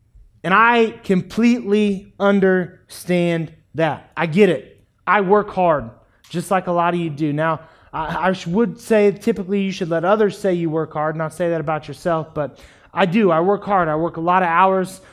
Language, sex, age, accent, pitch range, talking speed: English, male, 20-39, American, 170-210 Hz, 195 wpm